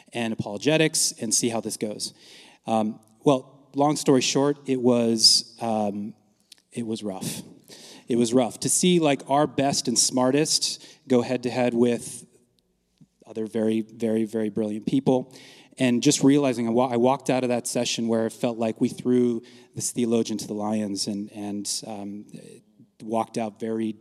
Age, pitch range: 30-49, 115-135 Hz